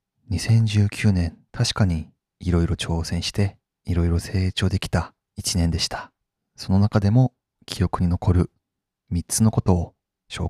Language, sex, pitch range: Japanese, male, 90-115 Hz